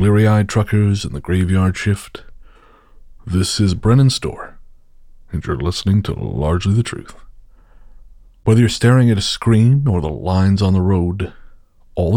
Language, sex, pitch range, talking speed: English, male, 90-120 Hz, 150 wpm